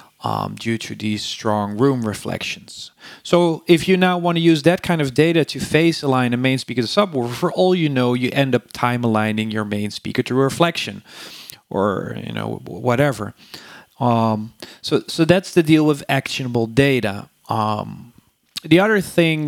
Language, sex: English, male